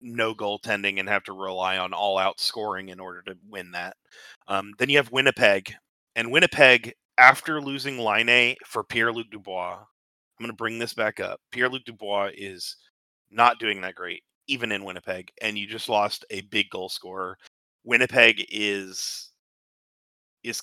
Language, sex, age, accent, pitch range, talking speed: English, male, 30-49, American, 100-120 Hz, 165 wpm